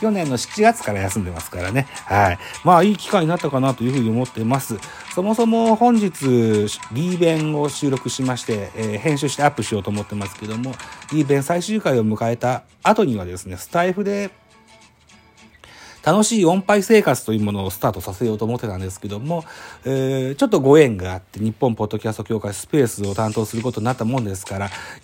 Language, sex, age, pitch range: Japanese, male, 40-59, 105-140 Hz